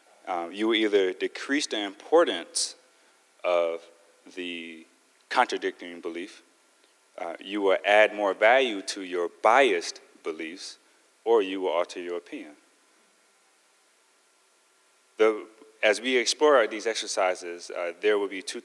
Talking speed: 120 wpm